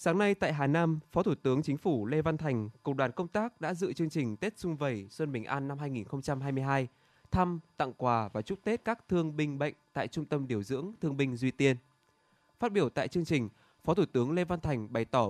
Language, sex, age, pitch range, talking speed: Vietnamese, male, 20-39, 125-160 Hz, 240 wpm